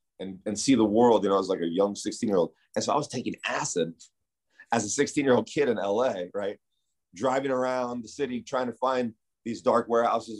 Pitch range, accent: 95-120 Hz, American